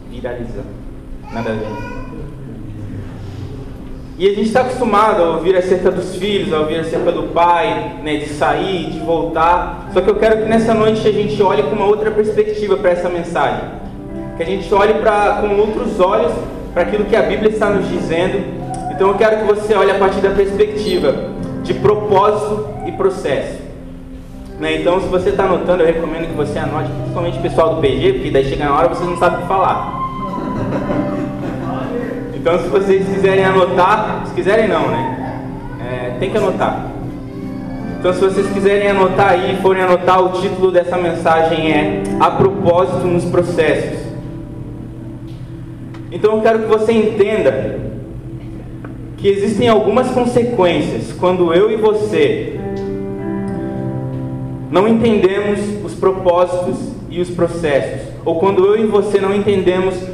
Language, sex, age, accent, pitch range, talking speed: Portuguese, male, 20-39, Brazilian, 145-200 Hz, 155 wpm